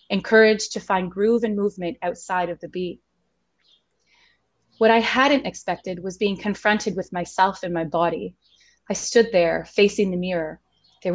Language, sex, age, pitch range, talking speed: English, female, 20-39, 180-220 Hz, 155 wpm